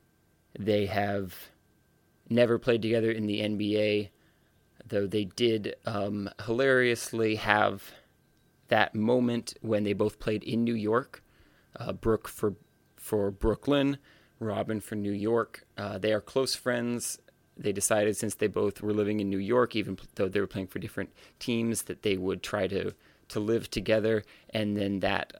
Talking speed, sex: 155 wpm, male